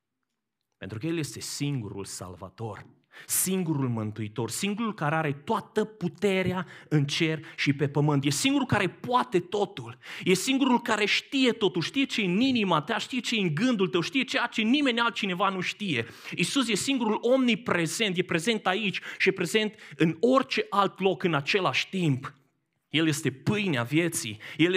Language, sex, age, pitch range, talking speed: Romanian, male, 30-49, 165-235 Hz, 165 wpm